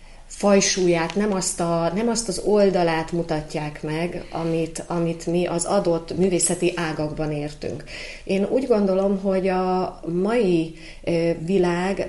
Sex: female